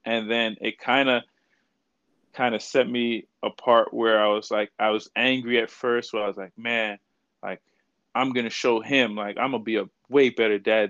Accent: American